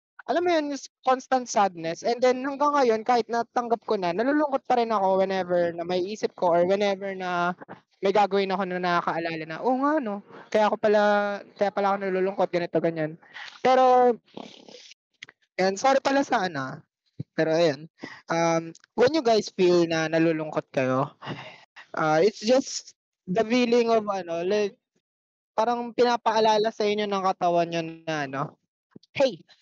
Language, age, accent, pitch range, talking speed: Filipino, 20-39, native, 180-250 Hz, 155 wpm